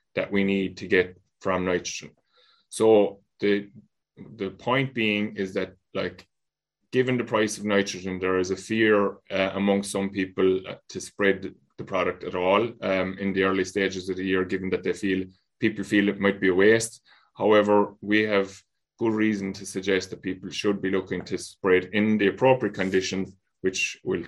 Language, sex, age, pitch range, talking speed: English, male, 20-39, 95-105 Hz, 180 wpm